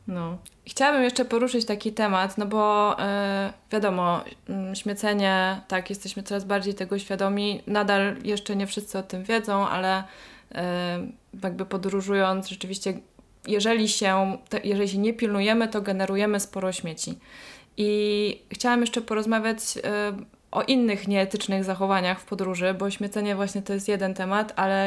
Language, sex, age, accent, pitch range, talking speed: Polish, female, 20-39, native, 200-225 Hz, 140 wpm